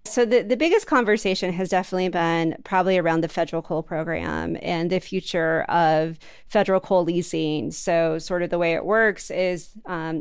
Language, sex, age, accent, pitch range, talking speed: English, female, 30-49, American, 170-205 Hz, 175 wpm